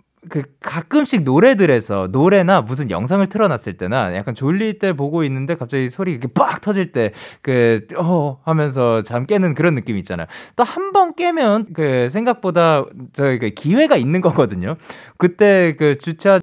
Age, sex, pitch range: 20-39, male, 110-185 Hz